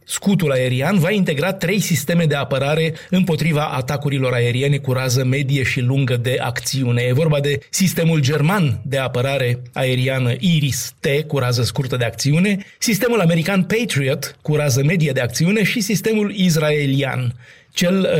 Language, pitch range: Romanian, 135-170 Hz